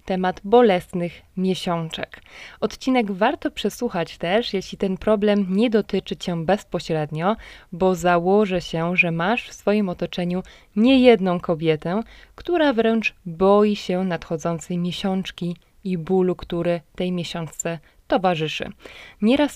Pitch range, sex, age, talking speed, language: 170-220 Hz, female, 20-39, 115 wpm, Polish